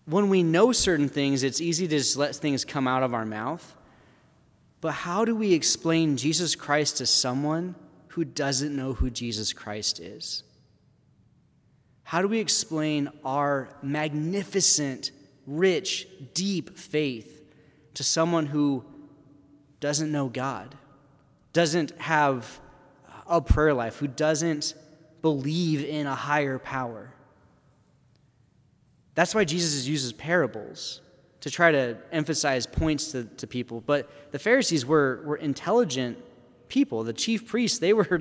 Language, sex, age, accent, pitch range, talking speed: English, male, 30-49, American, 130-165 Hz, 130 wpm